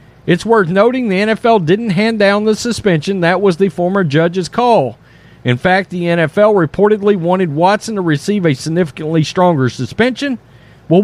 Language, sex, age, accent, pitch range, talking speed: English, male, 40-59, American, 170-235 Hz, 165 wpm